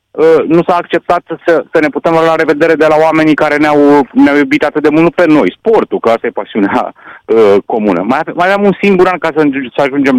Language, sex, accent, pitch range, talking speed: Romanian, male, native, 130-195 Hz, 225 wpm